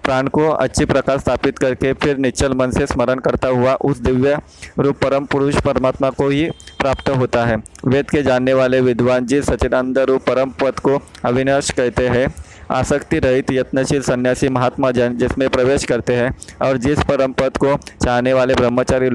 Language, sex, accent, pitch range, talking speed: Hindi, male, native, 125-140 Hz, 165 wpm